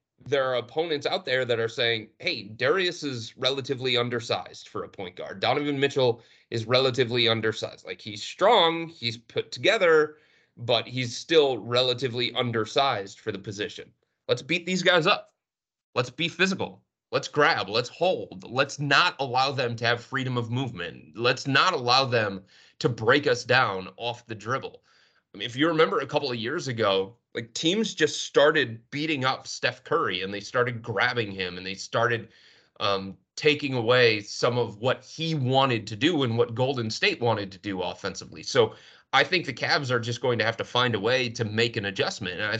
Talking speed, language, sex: 185 wpm, English, male